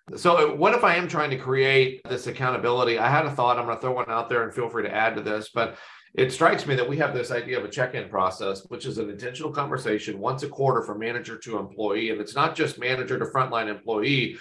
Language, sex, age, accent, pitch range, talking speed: English, male, 40-59, American, 115-135 Hz, 255 wpm